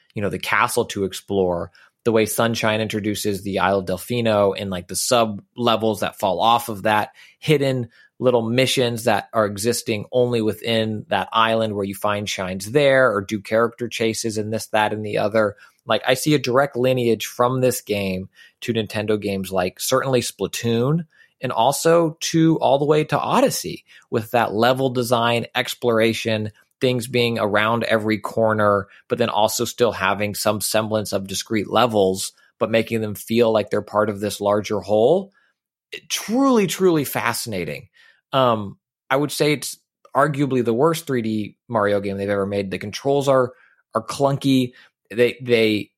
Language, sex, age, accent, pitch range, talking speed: English, male, 30-49, American, 105-130 Hz, 165 wpm